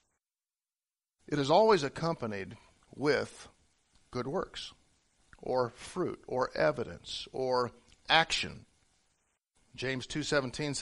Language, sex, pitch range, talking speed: English, male, 120-165 Hz, 85 wpm